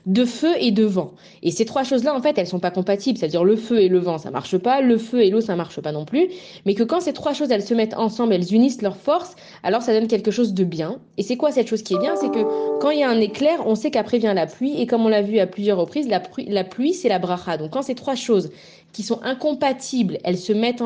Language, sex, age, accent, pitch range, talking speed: French, female, 20-39, French, 180-235 Hz, 295 wpm